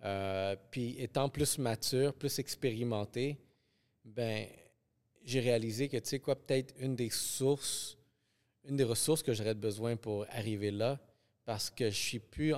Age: 30-49